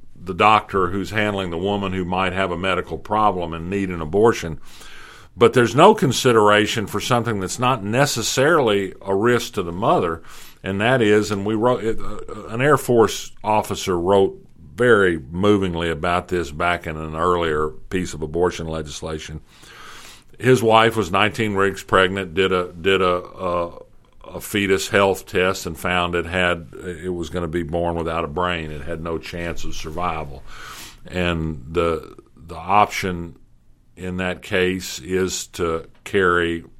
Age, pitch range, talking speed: 50-69, 85-100 Hz, 160 wpm